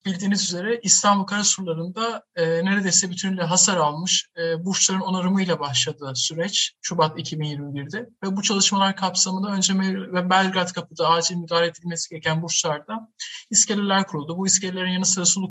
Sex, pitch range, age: male, 170-200 Hz, 50-69